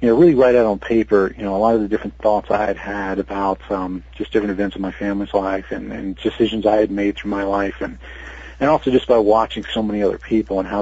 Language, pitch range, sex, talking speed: English, 100-120 Hz, male, 265 wpm